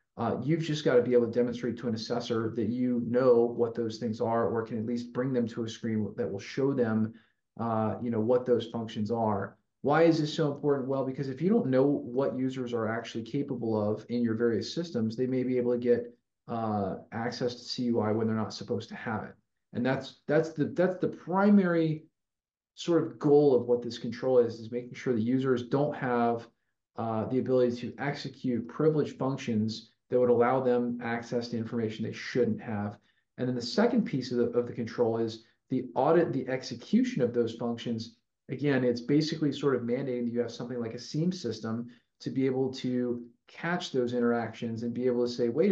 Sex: male